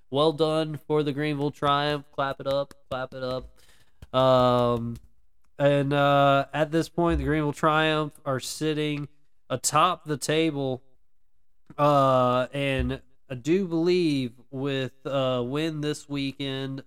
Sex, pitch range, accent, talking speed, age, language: male, 115-140 Hz, American, 130 wpm, 20-39, English